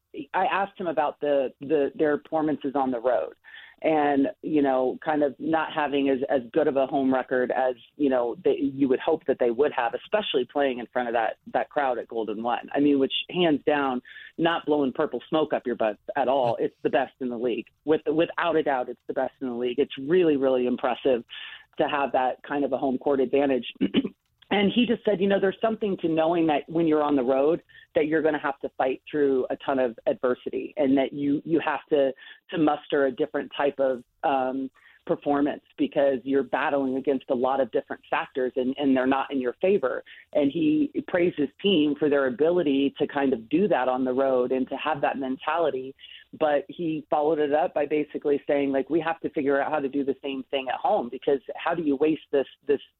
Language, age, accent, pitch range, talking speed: English, 30-49, American, 130-155 Hz, 225 wpm